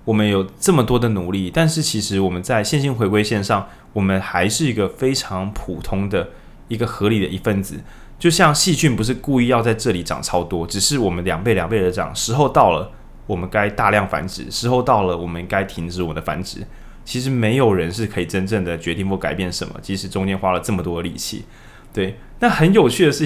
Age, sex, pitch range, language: 20-39, male, 95-125 Hz, Chinese